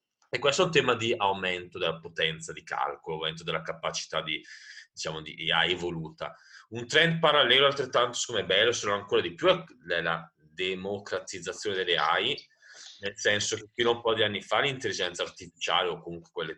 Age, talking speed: 30-49, 175 wpm